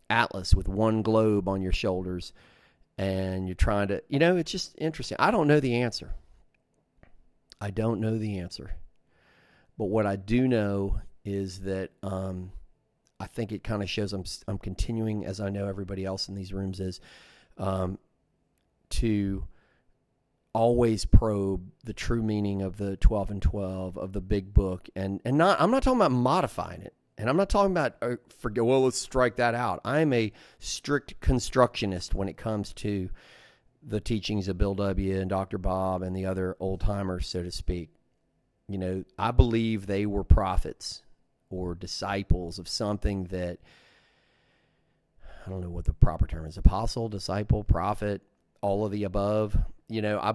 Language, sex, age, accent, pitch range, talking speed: English, male, 40-59, American, 95-110 Hz, 170 wpm